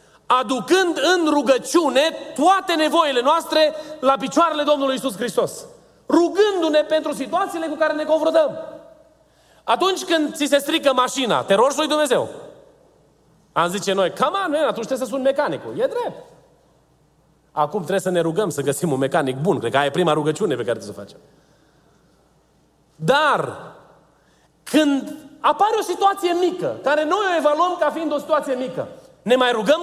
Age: 30-49